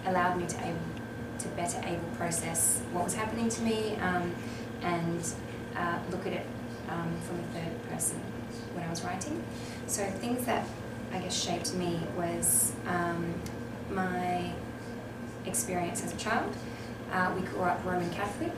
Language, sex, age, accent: English, female, 20-39, Australian